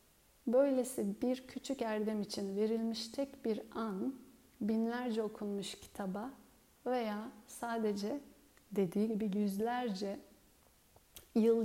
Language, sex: Turkish, female